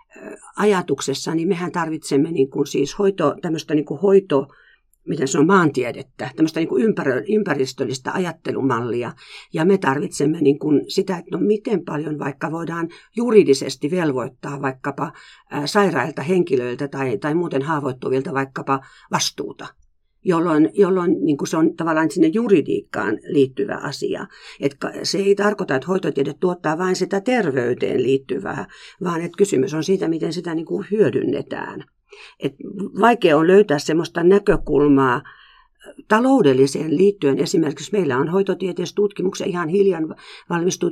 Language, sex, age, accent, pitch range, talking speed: Finnish, female, 50-69, native, 140-190 Hz, 135 wpm